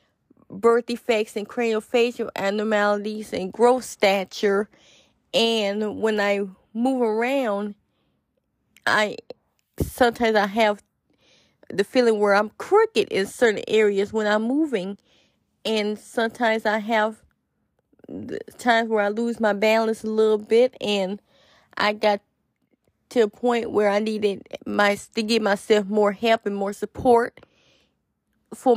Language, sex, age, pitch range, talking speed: English, female, 20-39, 210-235 Hz, 130 wpm